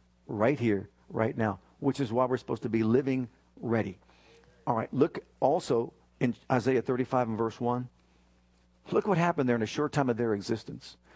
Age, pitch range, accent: 50-69, 110-145 Hz, American